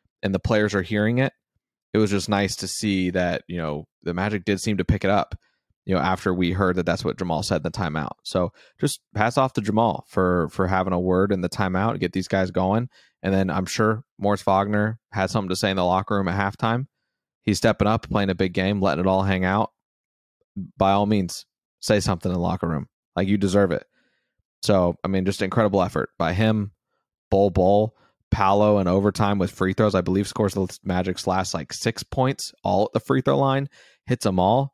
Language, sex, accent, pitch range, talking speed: English, male, American, 95-110 Hz, 225 wpm